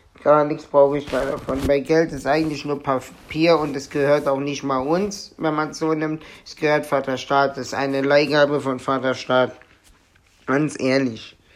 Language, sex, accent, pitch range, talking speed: German, male, German, 125-150 Hz, 180 wpm